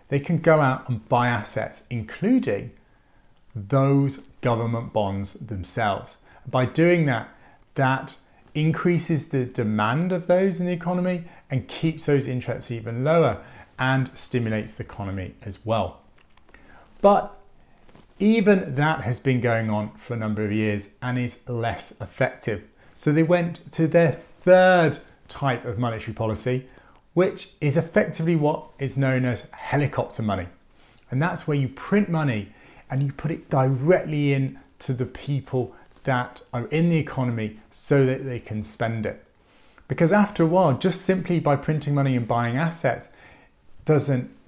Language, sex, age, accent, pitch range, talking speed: English, male, 30-49, British, 115-160 Hz, 150 wpm